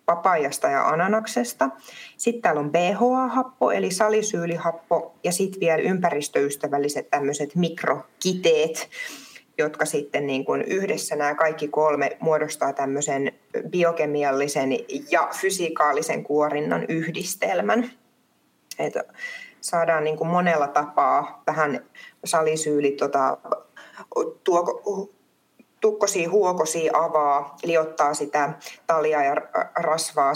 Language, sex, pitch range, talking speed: Finnish, female, 155-230 Hz, 95 wpm